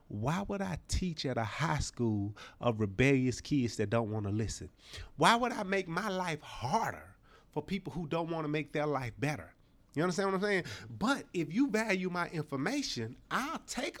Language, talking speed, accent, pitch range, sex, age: English, 195 wpm, American, 110-160 Hz, male, 30-49